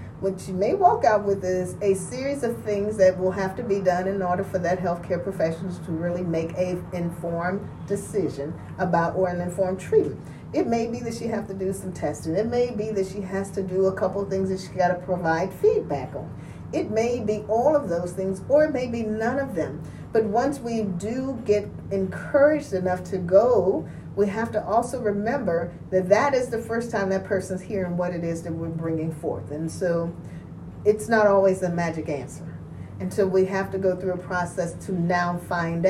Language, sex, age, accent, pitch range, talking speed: English, female, 40-59, American, 180-220 Hz, 210 wpm